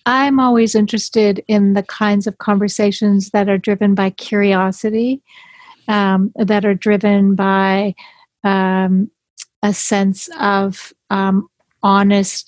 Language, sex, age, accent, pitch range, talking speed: English, female, 50-69, American, 200-225 Hz, 115 wpm